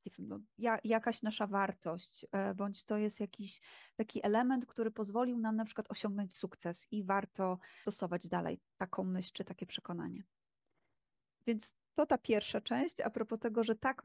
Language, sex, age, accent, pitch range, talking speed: Polish, female, 20-39, native, 210-240 Hz, 155 wpm